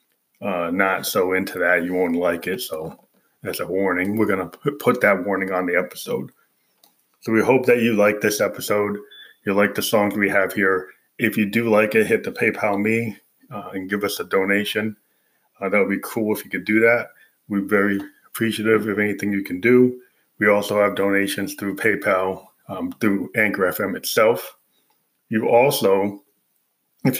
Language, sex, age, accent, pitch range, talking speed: English, male, 20-39, American, 100-110 Hz, 185 wpm